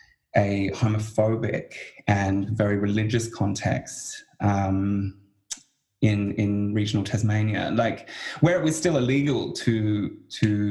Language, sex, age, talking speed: English, male, 20-39, 105 wpm